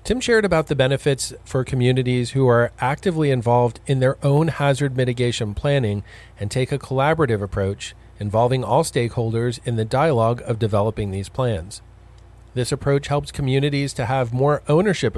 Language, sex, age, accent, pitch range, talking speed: English, male, 40-59, American, 110-140 Hz, 160 wpm